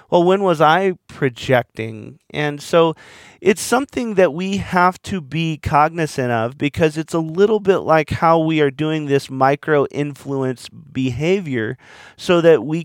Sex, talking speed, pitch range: male, 150 wpm, 135-180 Hz